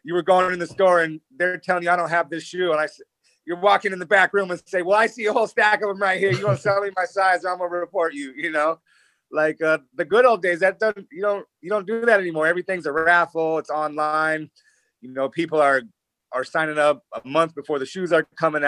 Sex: male